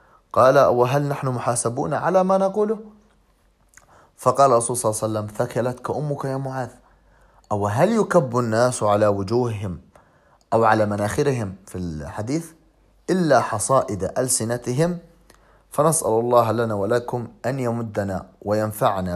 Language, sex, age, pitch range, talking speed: Arabic, male, 30-49, 105-155 Hz, 120 wpm